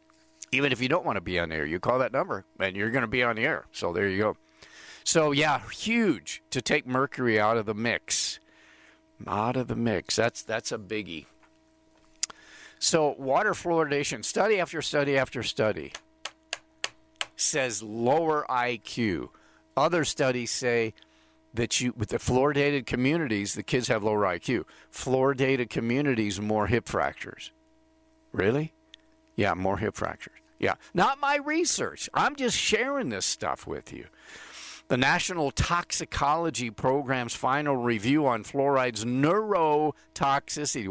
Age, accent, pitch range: 50-69, American, 110-155 Hz